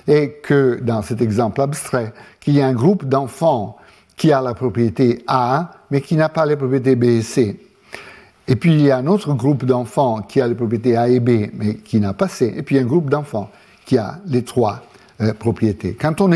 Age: 60-79